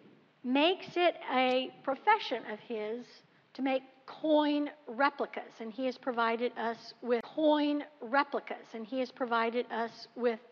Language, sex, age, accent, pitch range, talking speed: English, female, 60-79, American, 230-305 Hz, 135 wpm